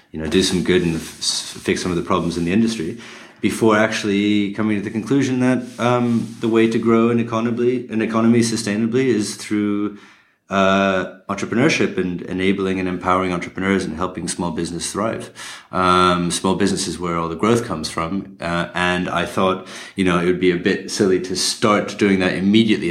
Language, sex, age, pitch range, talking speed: English, male, 30-49, 85-105 Hz, 190 wpm